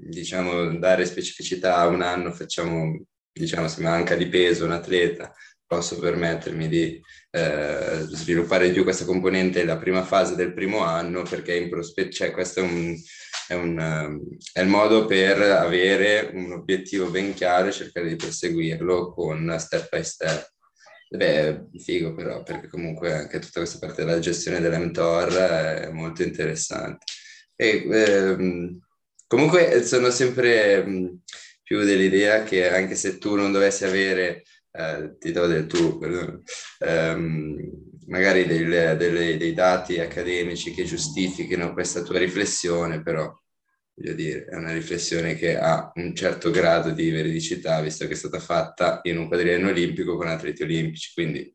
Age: 20-39